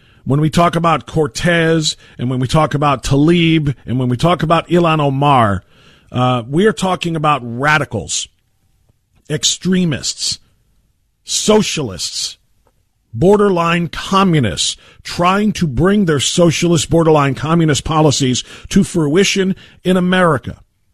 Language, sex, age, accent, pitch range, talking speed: English, male, 50-69, American, 115-190 Hz, 115 wpm